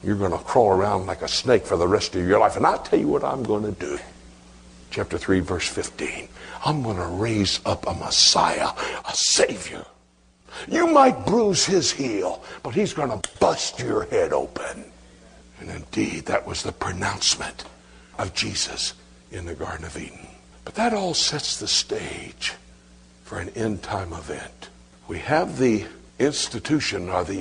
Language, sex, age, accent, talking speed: English, male, 60-79, American, 175 wpm